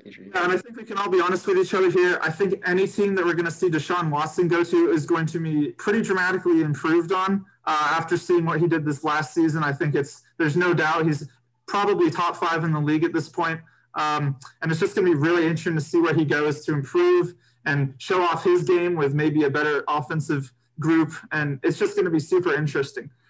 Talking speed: 240 wpm